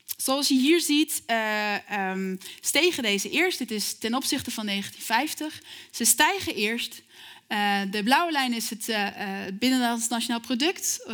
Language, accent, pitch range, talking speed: Dutch, Dutch, 200-285 Hz, 155 wpm